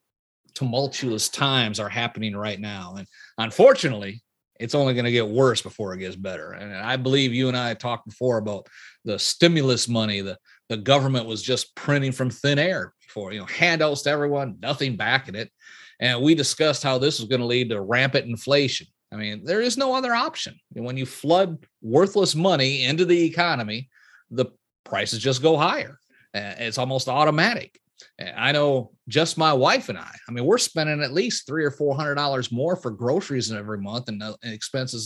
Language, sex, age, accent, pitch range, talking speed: English, male, 40-59, American, 110-145 Hz, 190 wpm